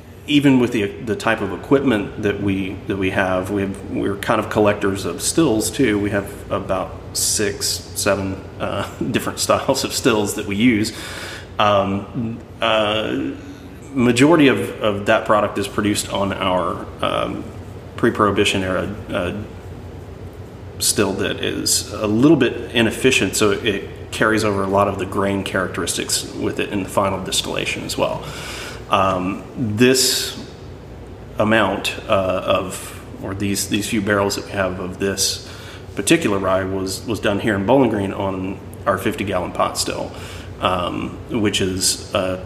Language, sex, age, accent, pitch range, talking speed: English, male, 30-49, American, 95-110 Hz, 155 wpm